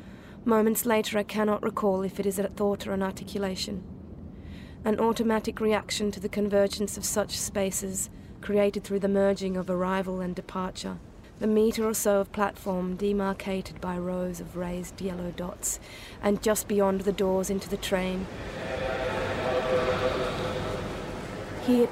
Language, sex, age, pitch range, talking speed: English, female, 30-49, 185-205 Hz, 140 wpm